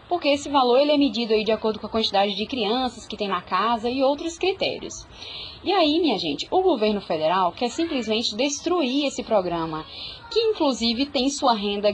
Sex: female